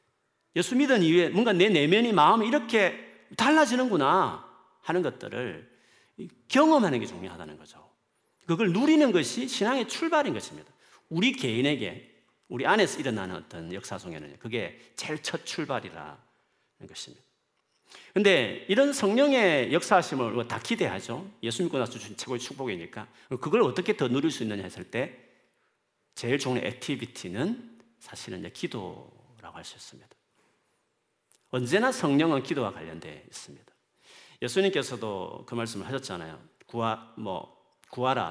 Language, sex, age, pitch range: Korean, male, 40-59, 115-180 Hz